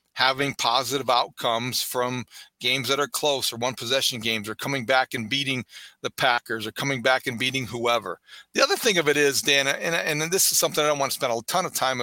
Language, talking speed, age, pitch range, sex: English, 230 wpm, 40-59, 130-170 Hz, male